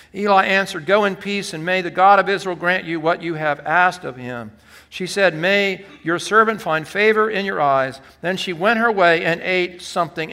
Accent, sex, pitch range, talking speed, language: American, male, 160-215 Hz, 215 wpm, English